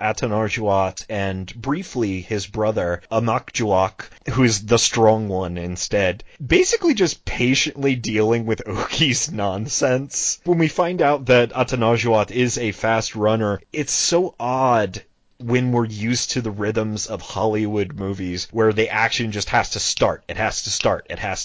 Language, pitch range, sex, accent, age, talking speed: English, 110-135 Hz, male, American, 30-49, 150 wpm